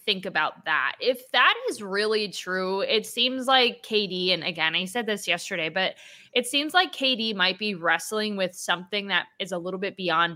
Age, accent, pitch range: 20-39, American, 185-240 Hz